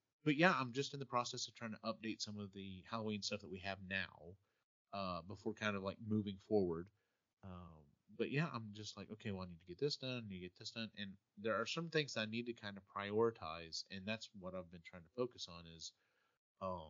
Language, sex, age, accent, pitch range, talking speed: English, male, 30-49, American, 95-120 Hz, 235 wpm